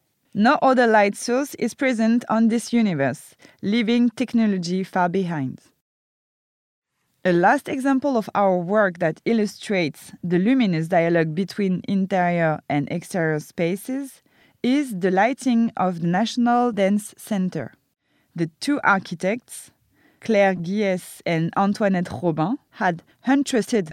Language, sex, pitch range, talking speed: French, female, 175-230 Hz, 120 wpm